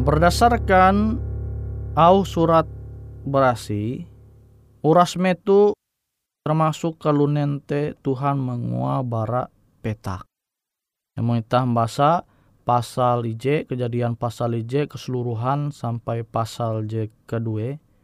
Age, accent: 20-39, native